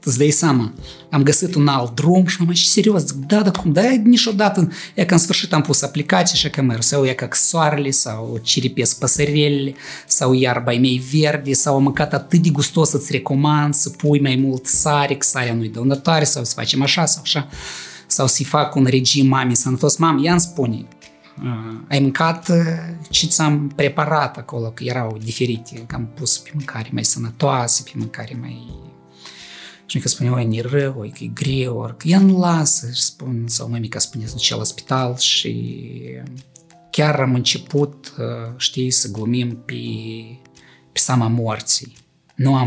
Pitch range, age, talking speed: 120-155 Hz, 20-39, 165 wpm